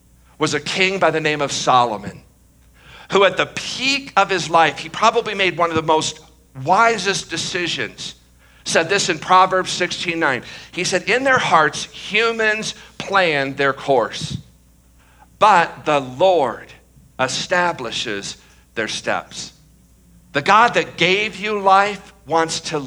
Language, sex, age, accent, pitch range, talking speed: English, male, 50-69, American, 135-185 Hz, 135 wpm